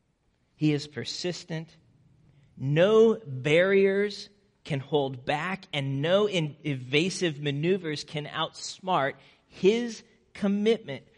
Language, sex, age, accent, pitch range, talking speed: English, male, 40-59, American, 130-180 Hz, 85 wpm